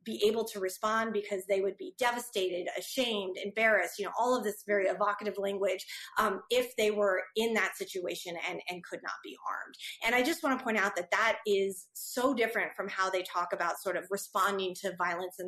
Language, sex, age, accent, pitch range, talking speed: English, female, 30-49, American, 180-215 Hz, 215 wpm